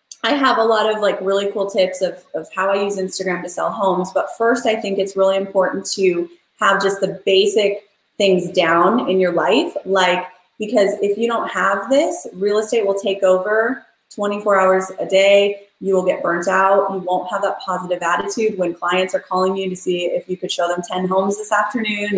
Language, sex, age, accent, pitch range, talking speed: English, female, 20-39, American, 180-210 Hz, 210 wpm